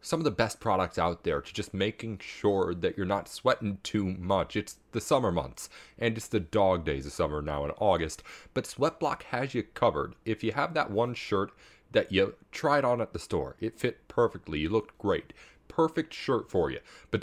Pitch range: 95-125 Hz